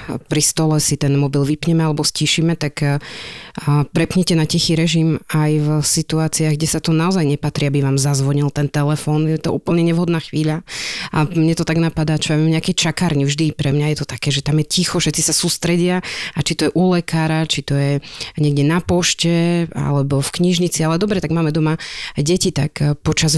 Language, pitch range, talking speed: Slovak, 145-160 Hz, 195 wpm